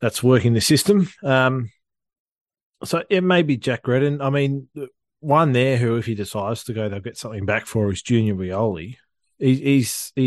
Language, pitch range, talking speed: English, 105-120 Hz, 185 wpm